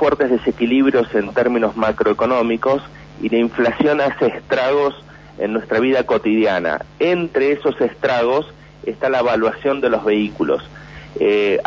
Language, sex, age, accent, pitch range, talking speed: Spanish, male, 40-59, Argentinian, 115-145 Hz, 125 wpm